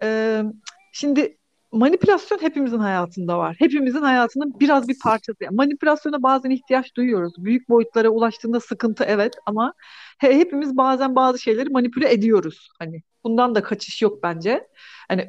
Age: 40-59